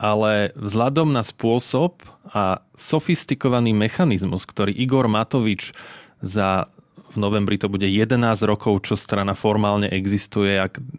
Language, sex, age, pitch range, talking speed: Slovak, male, 30-49, 100-120 Hz, 120 wpm